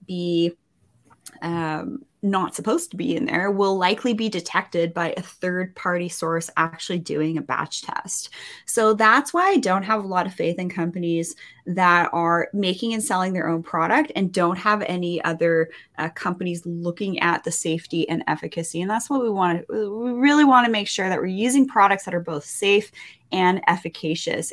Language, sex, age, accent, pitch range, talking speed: English, female, 20-39, American, 170-215 Hz, 185 wpm